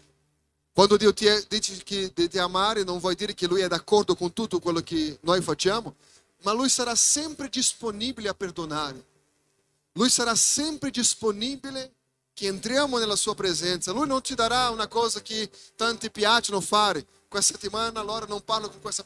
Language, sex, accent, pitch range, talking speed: Italian, male, Brazilian, 150-210 Hz, 175 wpm